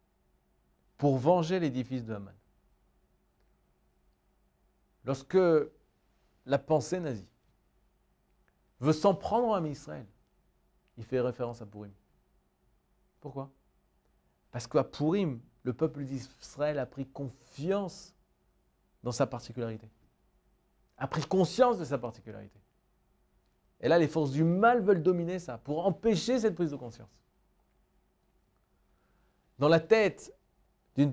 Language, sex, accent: French, male, French